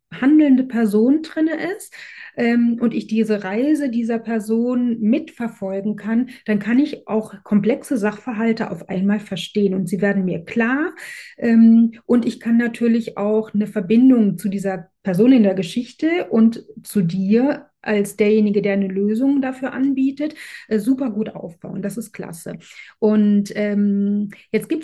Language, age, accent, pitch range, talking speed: German, 30-49, German, 205-245 Hz, 145 wpm